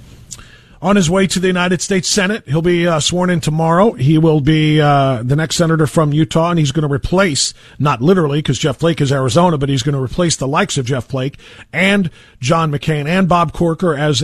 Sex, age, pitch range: male, 40-59, 135-190 Hz